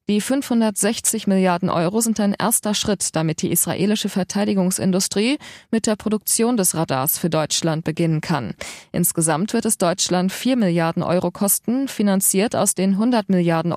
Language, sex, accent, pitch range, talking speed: German, female, German, 170-205 Hz, 150 wpm